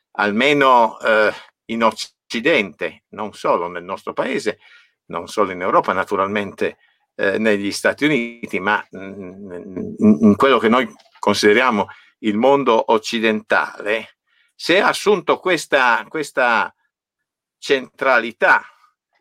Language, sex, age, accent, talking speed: Italian, male, 50-69, native, 105 wpm